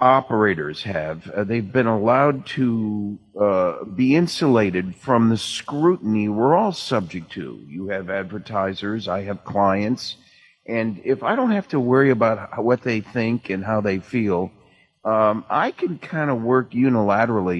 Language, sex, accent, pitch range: English, male, American, 95-125 Hz